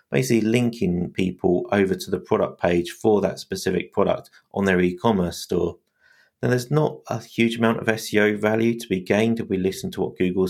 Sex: male